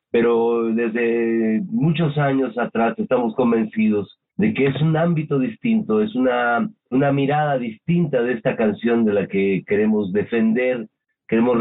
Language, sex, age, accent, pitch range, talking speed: Spanish, male, 50-69, Mexican, 115-165 Hz, 140 wpm